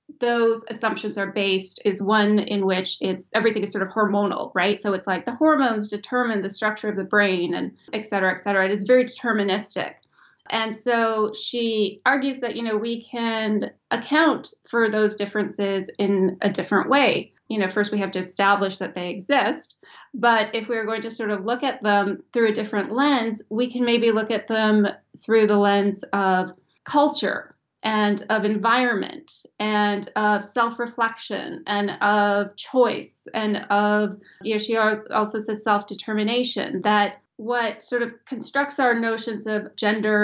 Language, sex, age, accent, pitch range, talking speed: English, female, 30-49, American, 205-230 Hz, 170 wpm